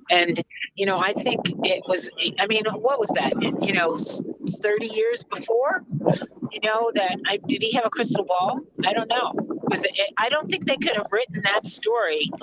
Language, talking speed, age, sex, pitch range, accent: English, 205 wpm, 40-59, female, 175-235 Hz, American